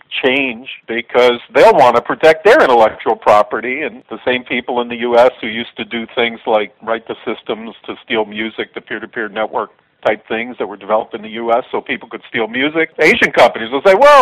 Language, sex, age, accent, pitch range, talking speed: English, male, 50-69, American, 115-145 Hz, 205 wpm